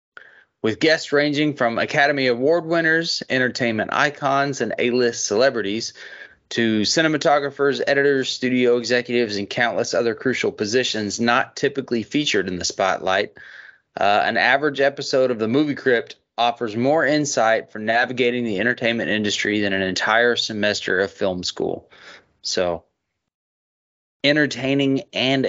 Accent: American